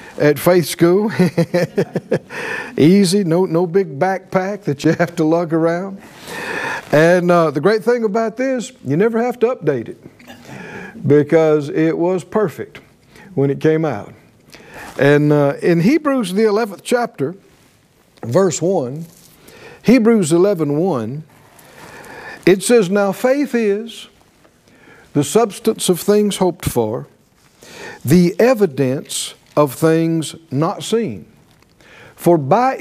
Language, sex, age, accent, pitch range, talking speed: English, male, 60-79, American, 145-210 Hz, 120 wpm